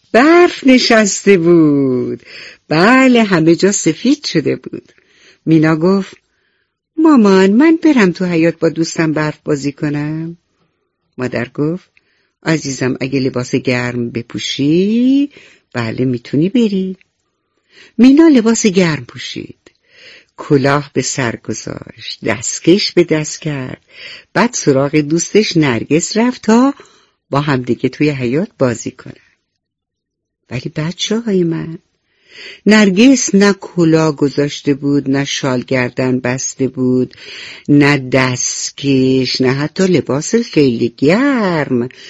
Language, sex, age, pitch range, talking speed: English, female, 60-79, 135-205 Hz, 105 wpm